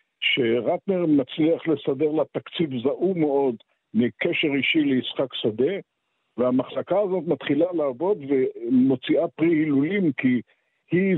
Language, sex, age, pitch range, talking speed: Hebrew, male, 50-69, 125-170 Hz, 105 wpm